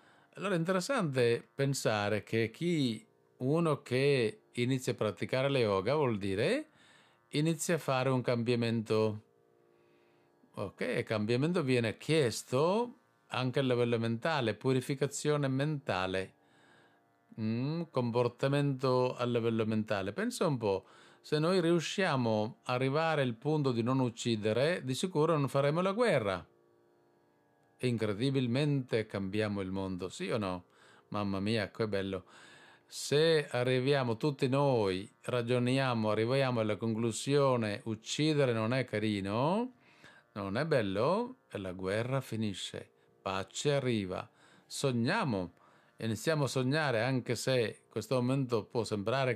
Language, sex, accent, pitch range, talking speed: Italian, male, native, 110-140 Hz, 120 wpm